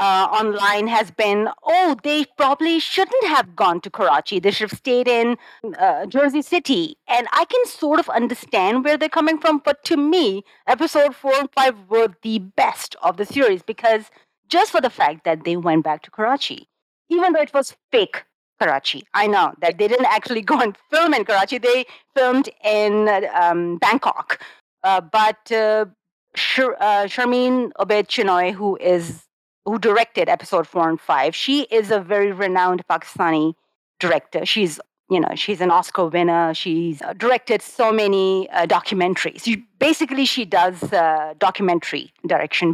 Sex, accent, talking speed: female, Indian, 165 wpm